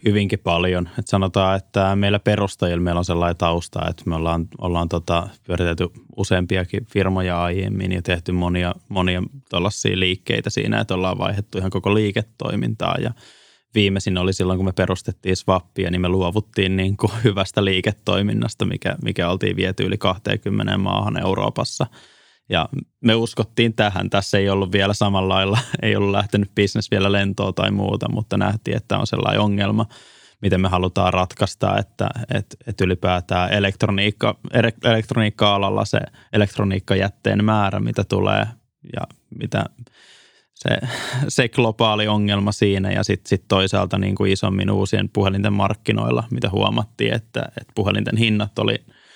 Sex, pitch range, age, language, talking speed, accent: male, 95-110 Hz, 20-39, Finnish, 145 wpm, native